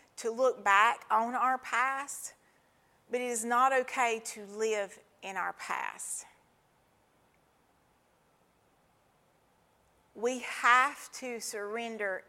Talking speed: 100 wpm